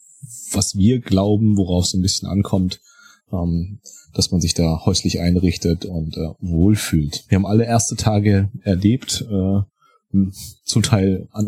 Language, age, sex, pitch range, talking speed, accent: German, 30-49, male, 90-110 Hz, 130 wpm, German